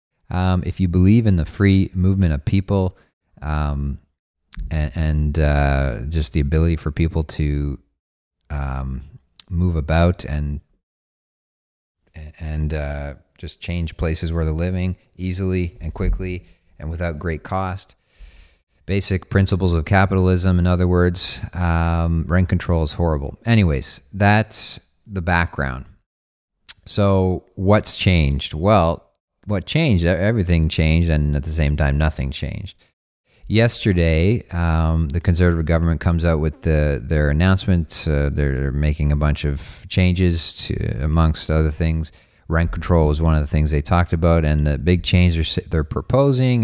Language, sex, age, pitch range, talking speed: English, male, 30-49, 75-90 Hz, 140 wpm